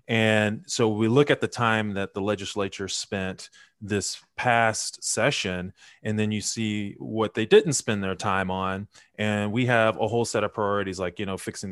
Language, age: English, 20-39